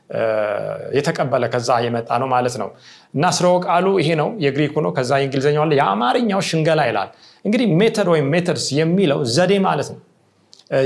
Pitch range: 135-195 Hz